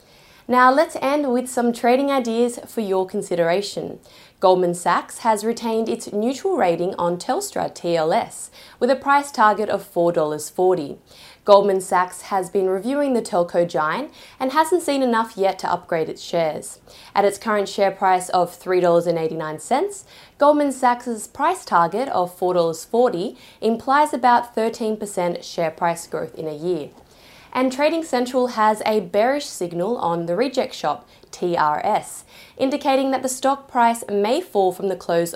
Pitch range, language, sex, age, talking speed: 180-250 Hz, English, female, 20-39, 150 wpm